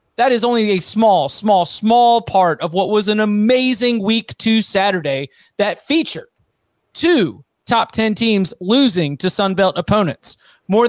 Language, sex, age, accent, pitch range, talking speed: English, male, 30-49, American, 175-220 Hz, 150 wpm